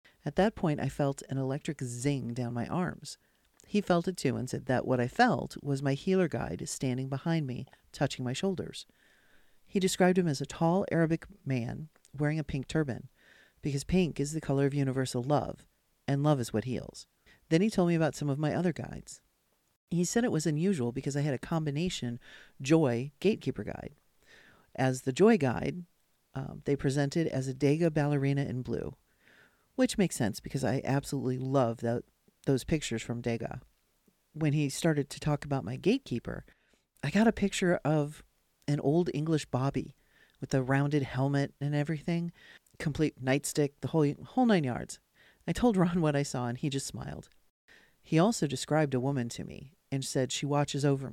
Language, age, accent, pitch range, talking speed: English, 40-59, American, 130-165 Hz, 185 wpm